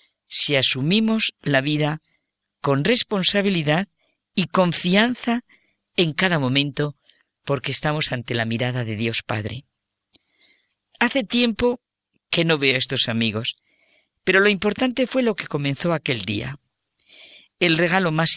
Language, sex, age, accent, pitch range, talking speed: Spanish, female, 50-69, Spanish, 120-185 Hz, 125 wpm